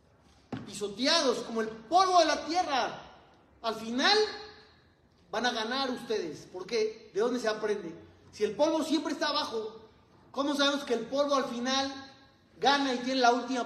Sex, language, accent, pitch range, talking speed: male, Spanish, Mexican, 225-285 Hz, 160 wpm